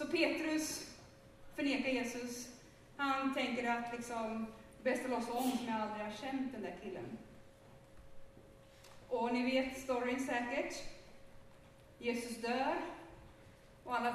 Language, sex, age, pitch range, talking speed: Swedish, female, 30-49, 235-310 Hz, 130 wpm